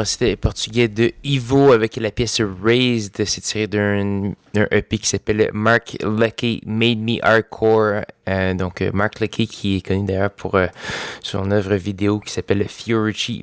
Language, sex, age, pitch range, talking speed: French, male, 20-39, 95-110 Hz, 160 wpm